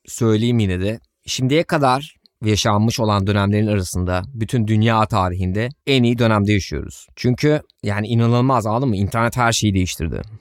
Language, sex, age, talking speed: Turkish, male, 20-39, 145 wpm